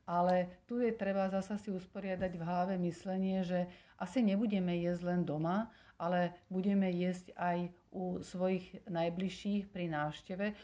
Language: Slovak